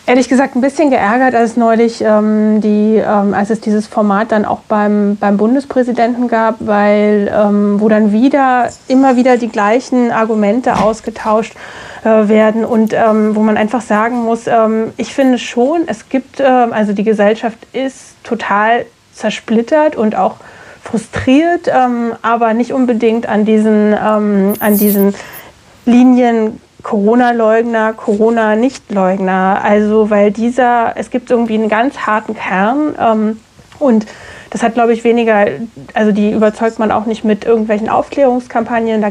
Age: 30-49